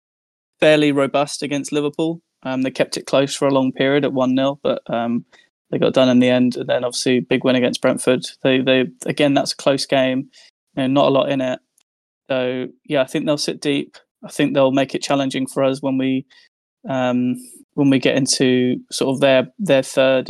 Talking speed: 210 wpm